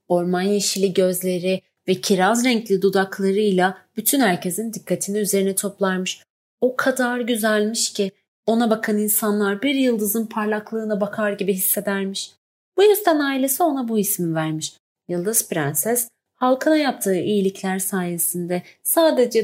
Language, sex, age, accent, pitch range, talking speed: Turkish, female, 30-49, native, 190-275 Hz, 120 wpm